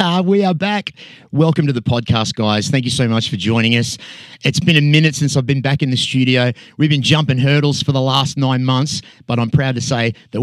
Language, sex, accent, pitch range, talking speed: English, male, Australian, 120-155 Hz, 235 wpm